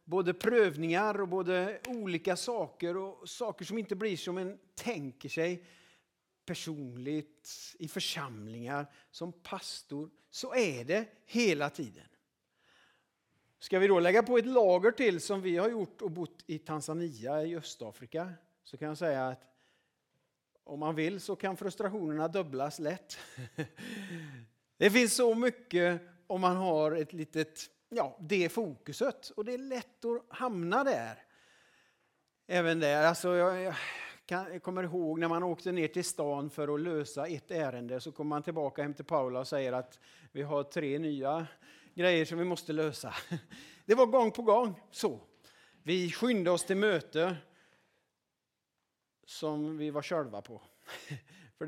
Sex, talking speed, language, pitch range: male, 150 wpm, Swedish, 150-195 Hz